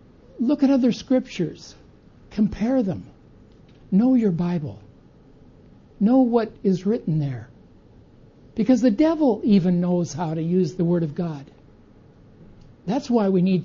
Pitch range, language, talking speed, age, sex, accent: 165-220 Hz, English, 130 wpm, 60-79, male, American